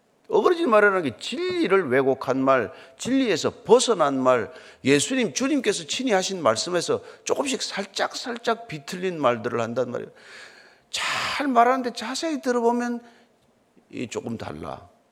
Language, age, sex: Korean, 40-59, male